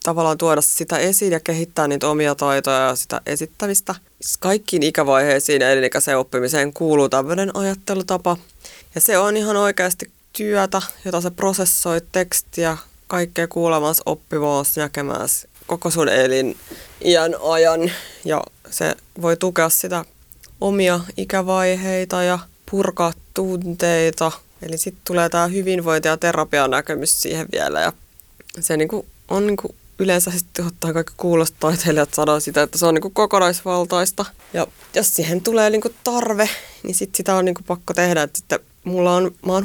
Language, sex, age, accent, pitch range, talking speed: Finnish, female, 20-39, native, 155-190 Hz, 135 wpm